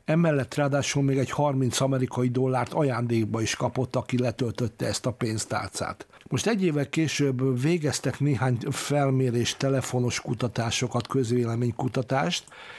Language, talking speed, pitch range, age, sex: Hungarian, 115 wpm, 120-140 Hz, 60-79, male